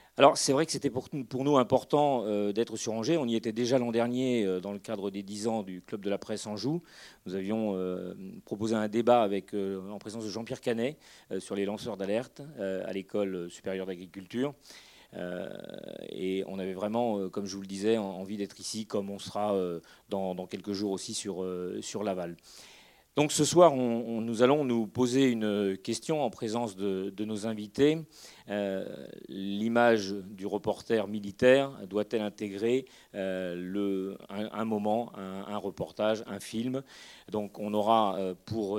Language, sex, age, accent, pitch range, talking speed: French, male, 40-59, French, 95-115 Hz, 165 wpm